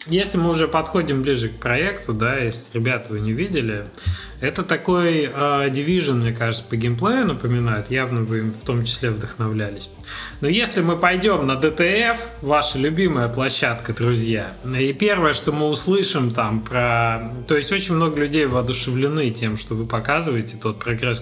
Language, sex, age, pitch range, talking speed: Russian, male, 20-39, 115-155 Hz, 165 wpm